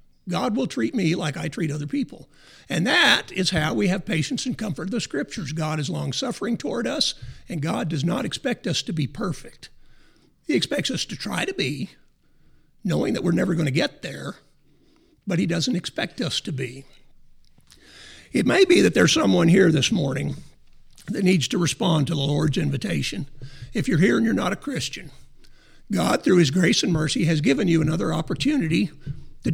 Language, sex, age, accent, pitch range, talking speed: English, male, 50-69, American, 155-195 Hz, 195 wpm